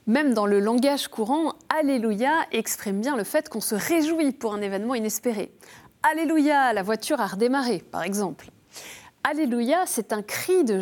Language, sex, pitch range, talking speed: French, female, 200-280 Hz, 160 wpm